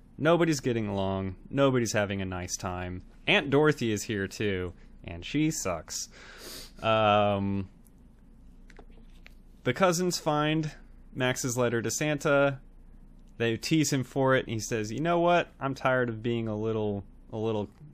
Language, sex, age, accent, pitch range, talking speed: English, male, 20-39, American, 100-130 Hz, 140 wpm